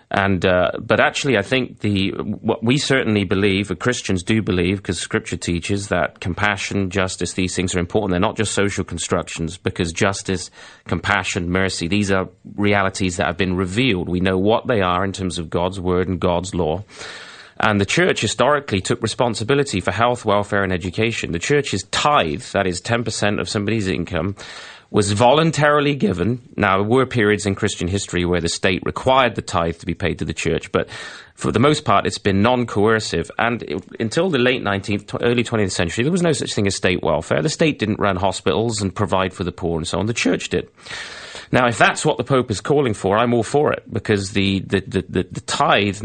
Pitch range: 95-115 Hz